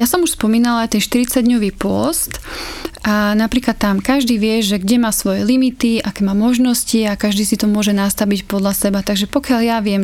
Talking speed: 195 wpm